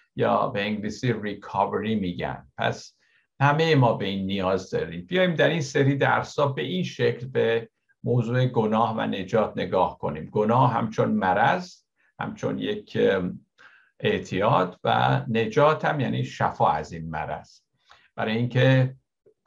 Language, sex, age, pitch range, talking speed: Persian, male, 60-79, 110-145 Hz, 130 wpm